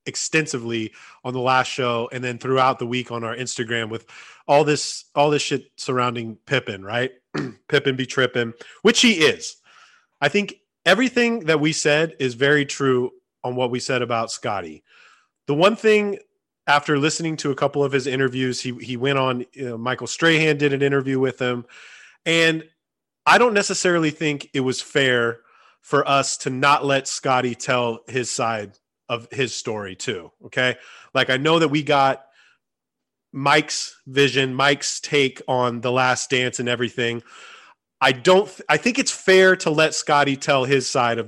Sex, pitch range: male, 125-155 Hz